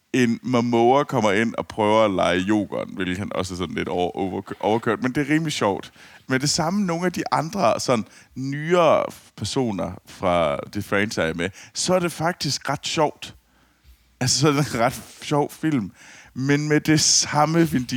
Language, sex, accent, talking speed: Danish, male, native, 180 wpm